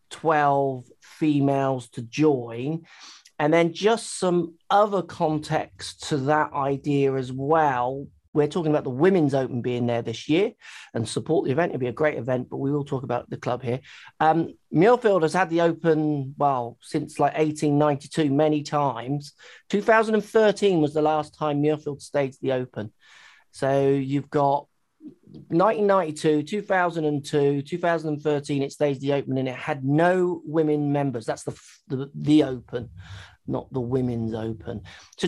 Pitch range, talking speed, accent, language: 140-180 Hz, 150 wpm, British, English